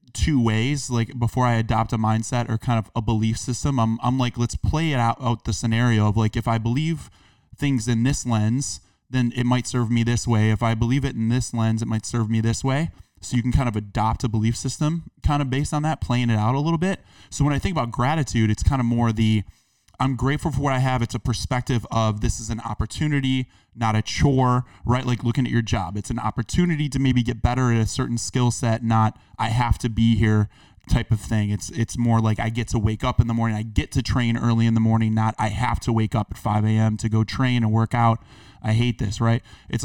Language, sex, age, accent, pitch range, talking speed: English, male, 20-39, American, 110-125 Hz, 255 wpm